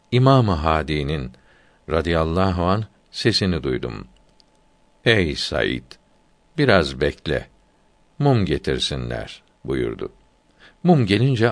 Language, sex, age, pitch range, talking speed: Turkish, male, 60-79, 80-120 Hz, 80 wpm